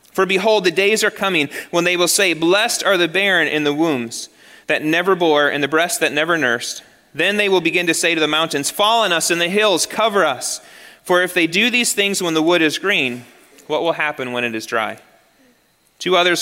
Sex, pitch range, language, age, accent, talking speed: male, 135-180 Hz, English, 30-49, American, 230 wpm